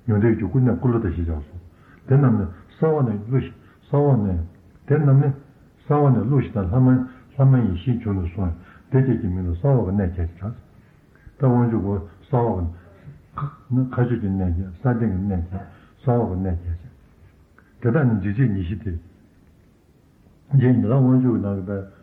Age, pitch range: 60-79, 90-120 Hz